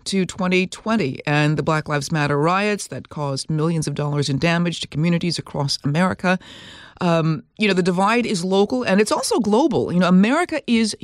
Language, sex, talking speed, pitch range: English, female, 185 wpm, 155-200 Hz